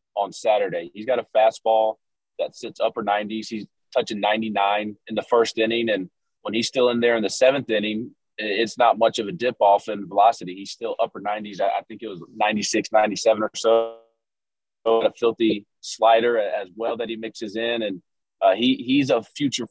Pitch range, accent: 110-140 Hz, American